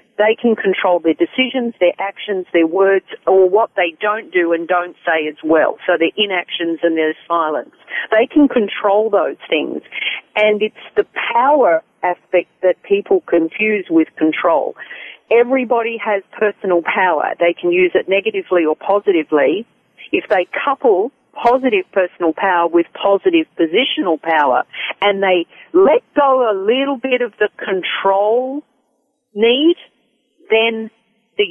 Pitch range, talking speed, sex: 180-245 Hz, 140 wpm, female